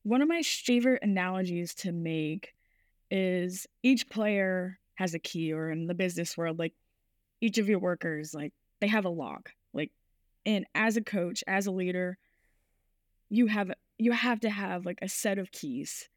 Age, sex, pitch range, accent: 10-29, female, 180-225 Hz, American